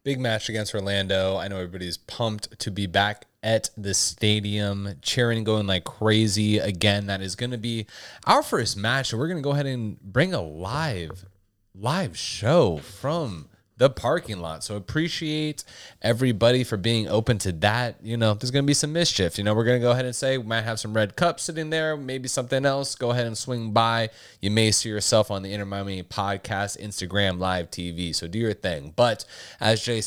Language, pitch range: English, 95-120 Hz